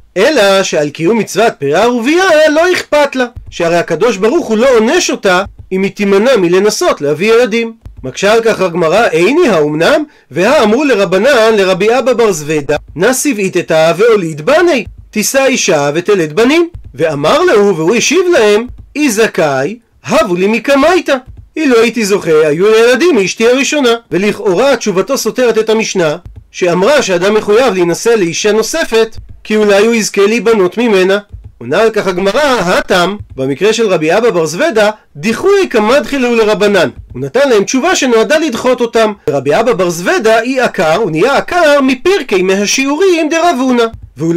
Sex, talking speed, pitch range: male, 135 wpm, 185-265 Hz